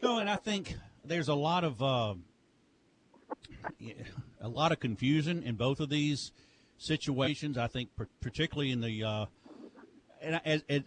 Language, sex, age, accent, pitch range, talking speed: English, male, 50-69, American, 120-150 Hz, 150 wpm